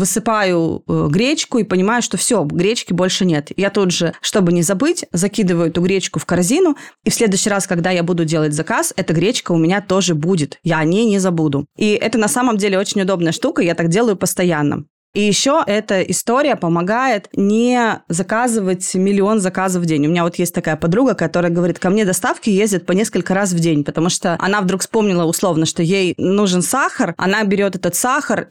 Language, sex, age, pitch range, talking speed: Russian, female, 20-39, 170-210 Hz, 200 wpm